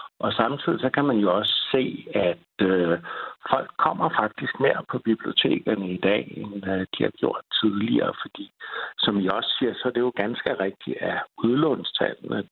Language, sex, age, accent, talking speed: Danish, male, 60-79, native, 175 wpm